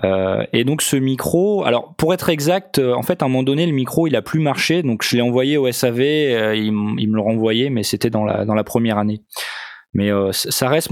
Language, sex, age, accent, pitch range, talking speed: French, male, 20-39, French, 110-140 Hz, 260 wpm